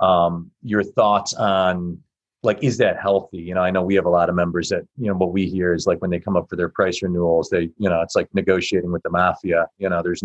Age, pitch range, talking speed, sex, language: 40-59, 95-120 Hz, 270 wpm, male, English